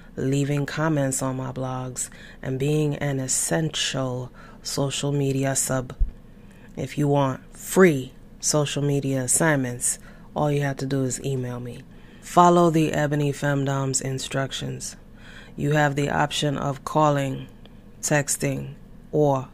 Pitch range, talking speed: 130-160 Hz, 125 wpm